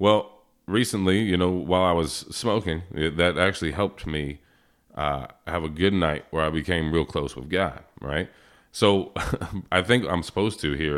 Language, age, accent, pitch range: English, 30-49, American, 75-95 Hz